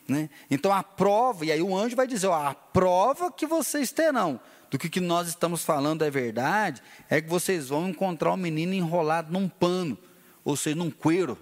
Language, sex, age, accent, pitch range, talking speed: Portuguese, male, 30-49, Brazilian, 135-195 Hz, 205 wpm